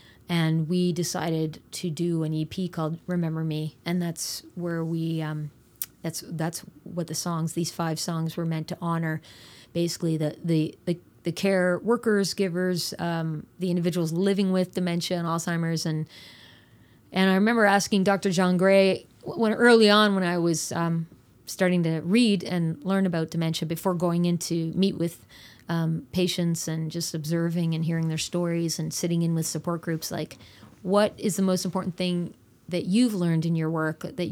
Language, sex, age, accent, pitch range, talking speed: English, female, 30-49, American, 160-180 Hz, 175 wpm